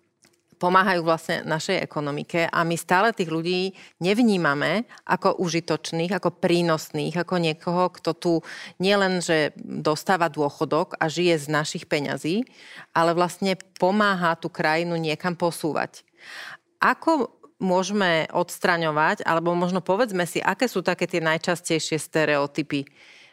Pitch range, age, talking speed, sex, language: 150-175 Hz, 30-49, 120 wpm, female, Slovak